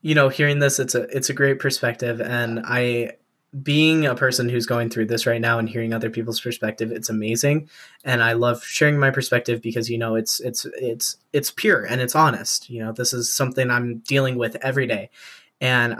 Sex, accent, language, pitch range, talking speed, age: male, American, English, 115-140 Hz, 210 wpm, 10-29